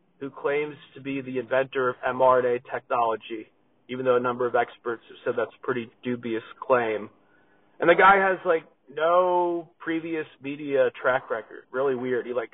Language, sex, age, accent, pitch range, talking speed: English, male, 30-49, American, 125-185 Hz, 170 wpm